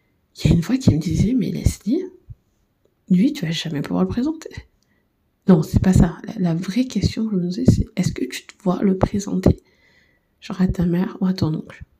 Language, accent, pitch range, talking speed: French, French, 170-215 Hz, 245 wpm